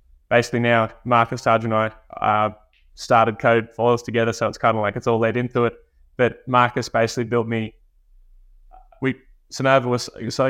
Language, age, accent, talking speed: English, 20-39, Australian, 165 wpm